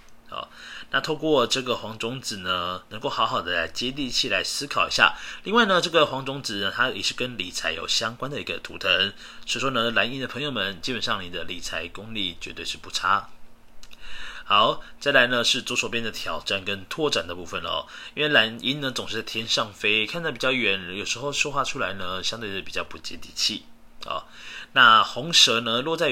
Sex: male